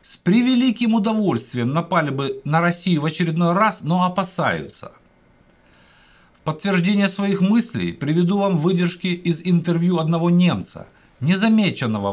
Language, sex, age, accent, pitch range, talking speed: Russian, male, 50-69, native, 150-195 Hz, 120 wpm